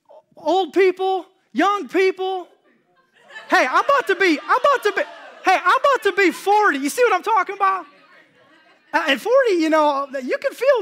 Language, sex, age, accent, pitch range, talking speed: English, male, 20-39, American, 265-355 Hz, 185 wpm